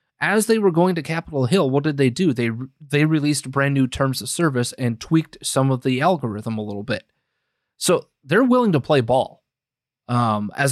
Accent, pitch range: American, 120-150 Hz